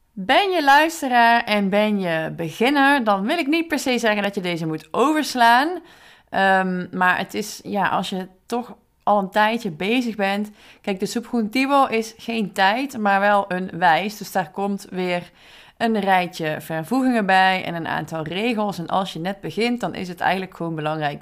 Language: Dutch